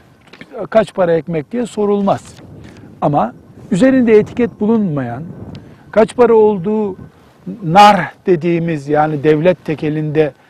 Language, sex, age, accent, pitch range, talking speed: Turkish, male, 60-79, native, 155-215 Hz, 95 wpm